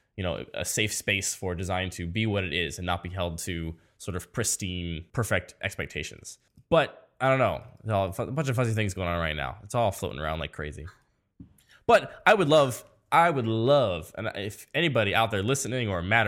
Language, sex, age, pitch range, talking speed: English, male, 10-29, 95-120 Hz, 220 wpm